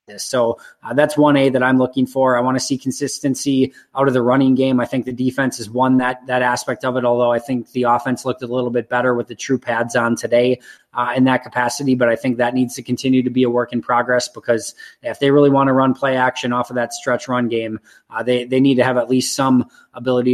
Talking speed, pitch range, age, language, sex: 260 wpm, 125-140 Hz, 20-39, English, male